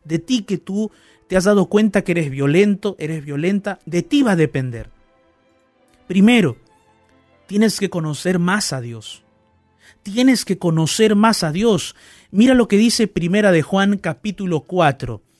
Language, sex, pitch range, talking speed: Spanish, male, 160-215 Hz, 155 wpm